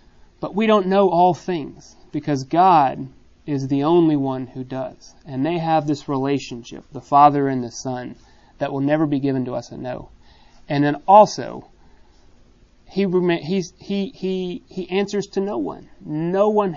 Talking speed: 155 wpm